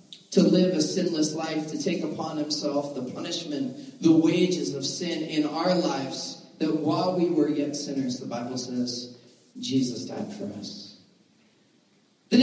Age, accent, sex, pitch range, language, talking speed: 40-59, American, male, 145-230 Hz, English, 155 wpm